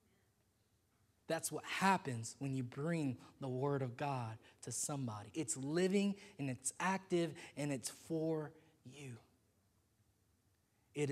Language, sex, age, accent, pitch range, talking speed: English, male, 20-39, American, 110-160 Hz, 120 wpm